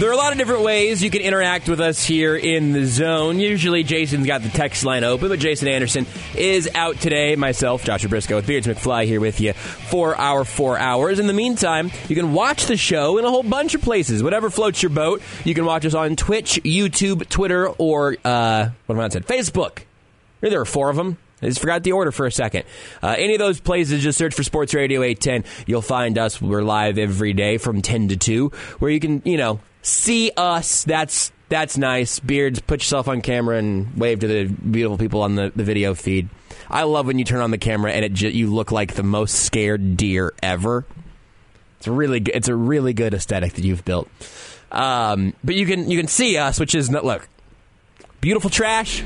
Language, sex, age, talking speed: English, male, 20-39, 220 wpm